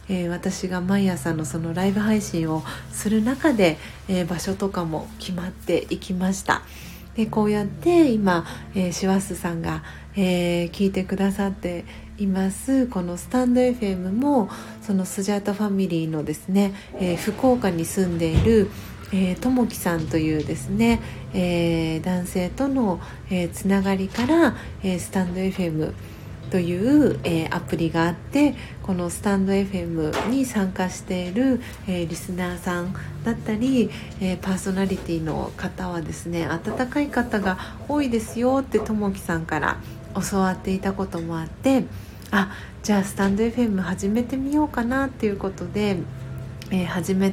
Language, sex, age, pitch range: Japanese, female, 40-59, 175-215 Hz